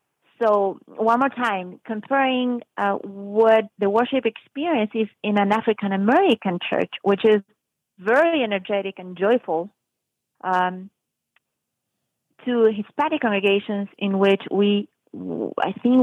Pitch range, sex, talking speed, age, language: 195-235 Hz, female, 110 wpm, 30-49, English